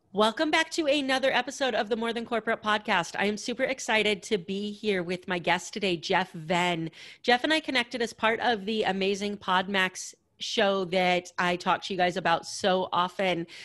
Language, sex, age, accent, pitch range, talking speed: English, female, 30-49, American, 180-220 Hz, 195 wpm